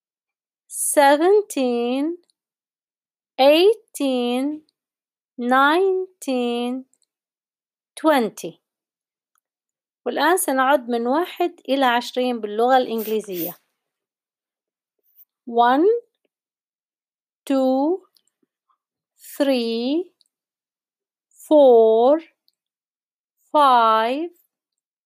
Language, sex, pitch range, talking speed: Arabic, female, 240-325 Hz, 40 wpm